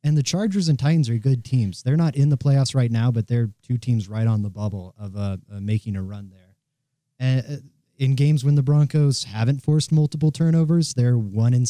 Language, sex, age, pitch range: English, male, 20-39, 110-135 Hz